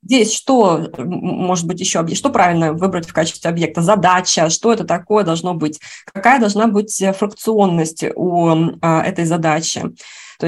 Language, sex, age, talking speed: Russian, female, 20-39, 150 wpm